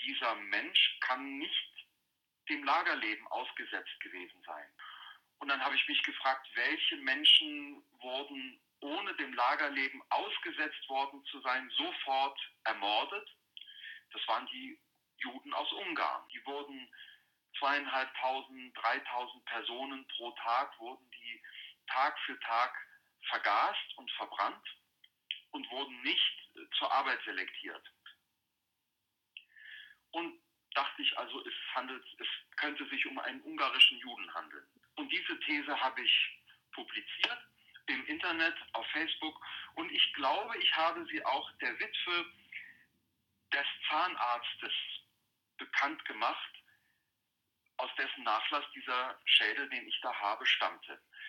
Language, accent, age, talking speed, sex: German, German, 40-59, 120 wpm, male